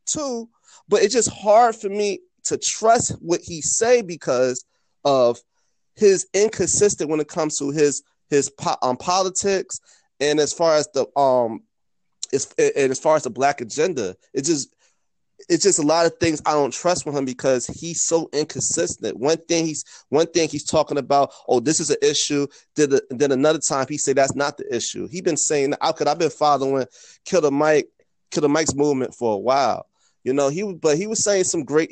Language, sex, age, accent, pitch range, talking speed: English, male, 30-49, American, 140-190 Hz, 200 wpm